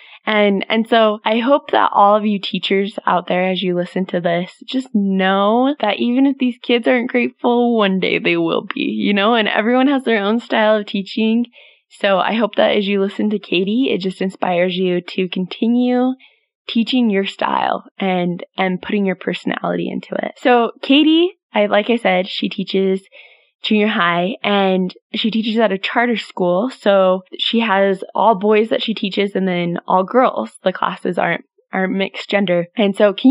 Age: 20-39